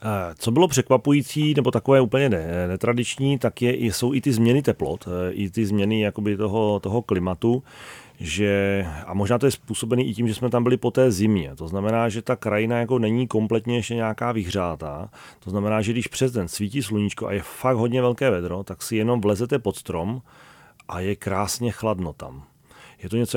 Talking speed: 195 wpm